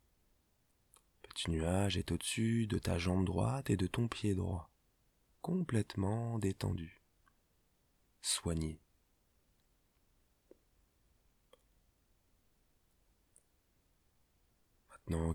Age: 20-39